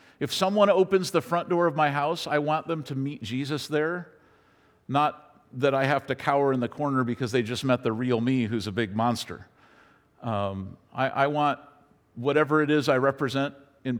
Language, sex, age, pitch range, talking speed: English, male, 50-69, 125-160 Hz, 195 wpm